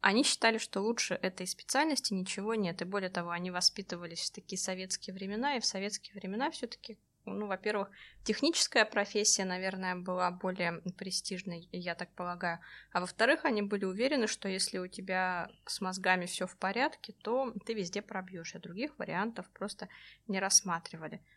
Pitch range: 180-225 Hz